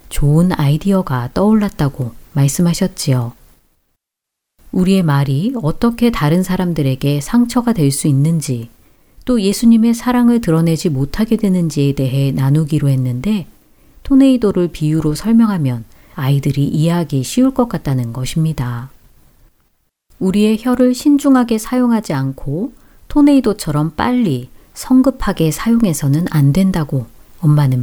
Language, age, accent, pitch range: Korean, 40-59, native, 140-210 Hz